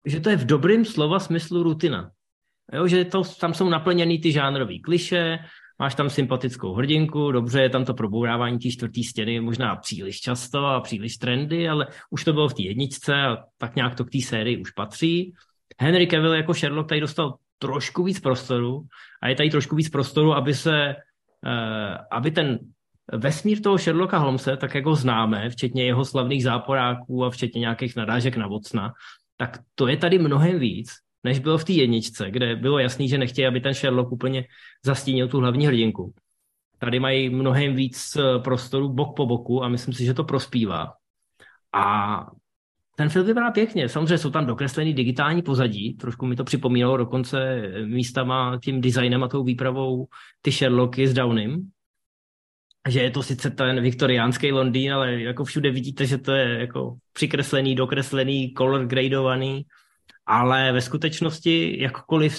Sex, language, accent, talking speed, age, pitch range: male, Czech, native, 170 wpm, 20-39, 125-150 Hz